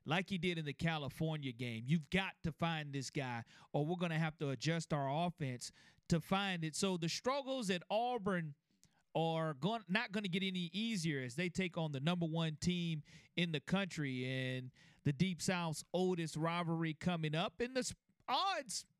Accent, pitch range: American, 160-210 Hz